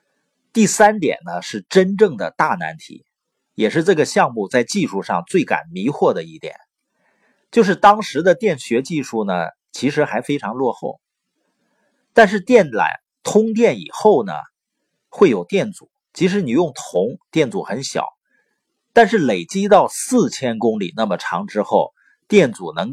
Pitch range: 140-215 Hz